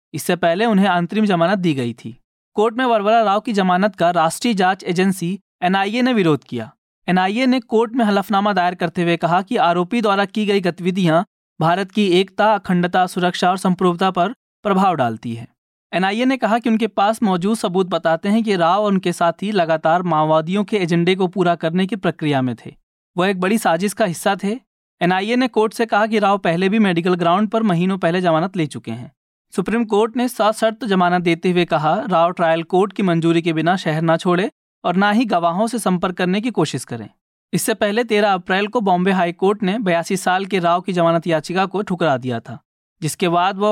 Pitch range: 170-210 Hz